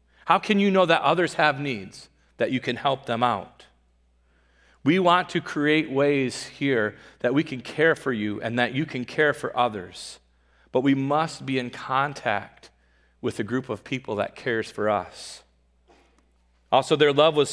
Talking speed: 180 wpm